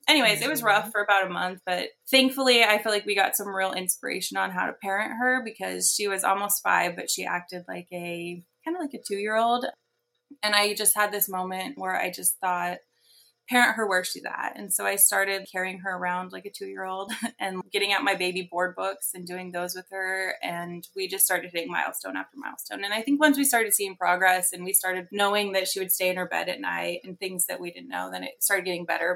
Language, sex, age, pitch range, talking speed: English, female, 20-39, 180-225 Hz, 235 wpm